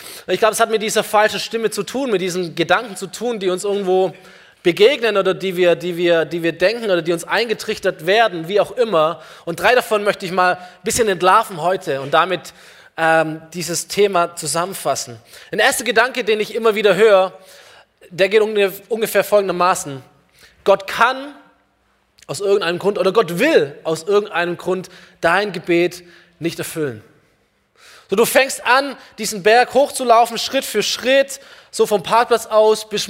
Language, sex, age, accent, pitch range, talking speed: German, male, 20-39, German, 180-225 Hz, 170 wpm